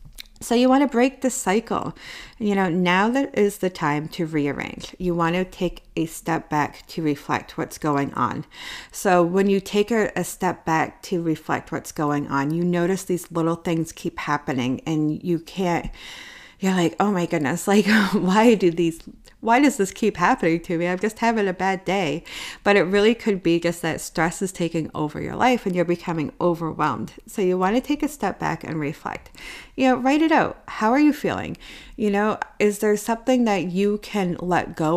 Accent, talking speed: American, 200 wpm